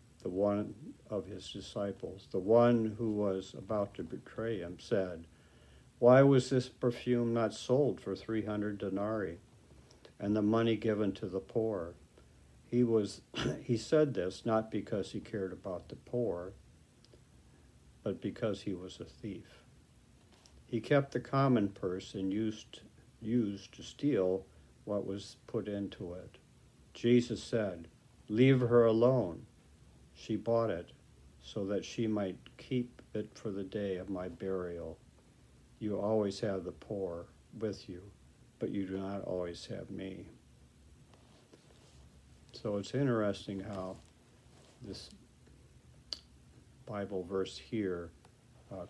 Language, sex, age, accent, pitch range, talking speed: English, male, 60-79, American, 95-115 Hz, 130 wpm